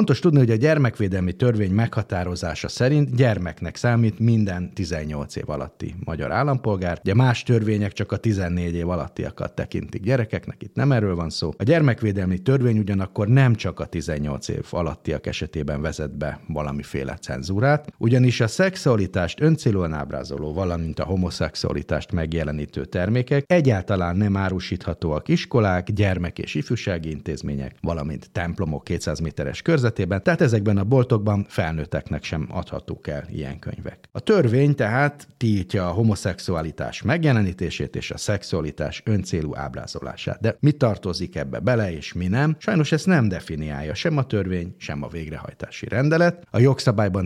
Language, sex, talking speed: Hungarian, male, 145 wpm